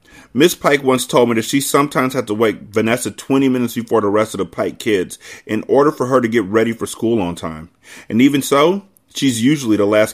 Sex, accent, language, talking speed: male, American, English, 230 wpm